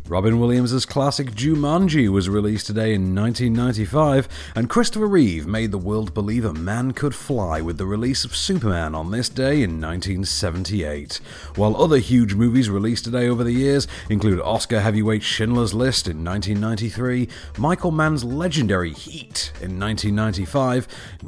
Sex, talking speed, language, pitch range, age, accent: male, 145 wpm, English, 90-135 Hz, 40-59, British